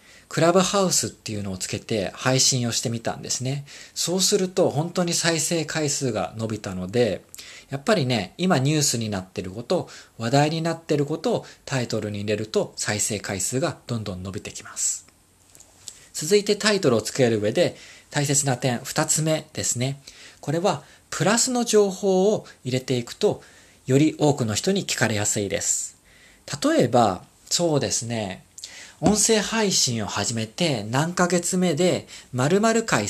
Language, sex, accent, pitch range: Japanese, male, native, 110-170 Hz